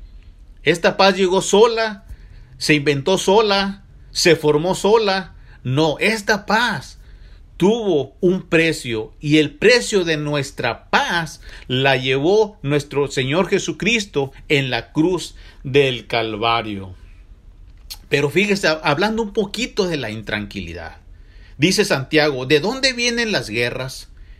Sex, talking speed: male, 115 wpm